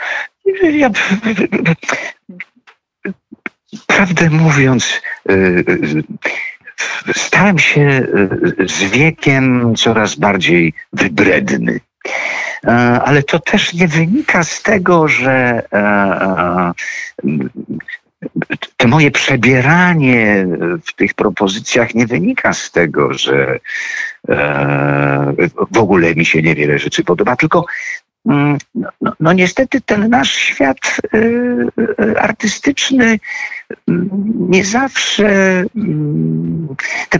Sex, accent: male, native